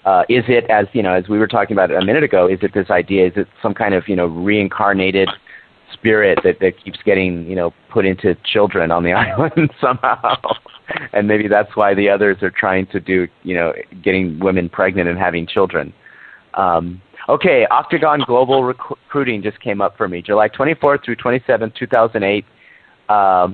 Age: 30-49